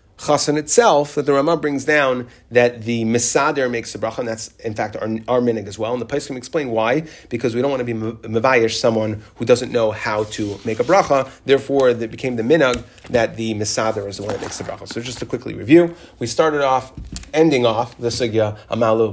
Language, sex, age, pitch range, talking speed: English, male, 30-49, 110-135 Hz, 230 wpm